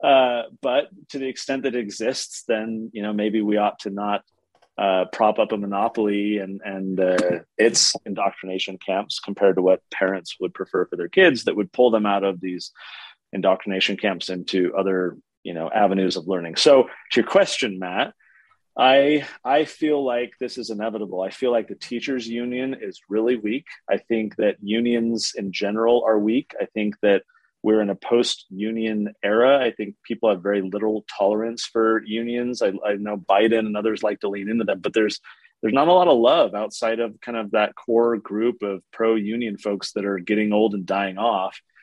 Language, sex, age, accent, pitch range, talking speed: English, male, 30-49, American, 100-120 Hz, 190 wpm